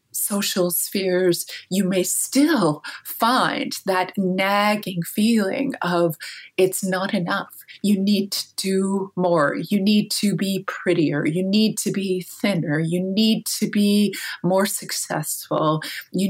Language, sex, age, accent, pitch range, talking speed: English, female, 20-39, American, 175-210 Hz, 130 wpm